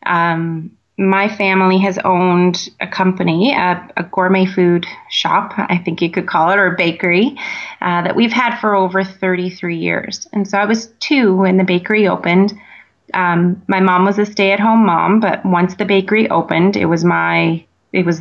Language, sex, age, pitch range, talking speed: English, female, 30-49, 175-205 Hz, 185 wpm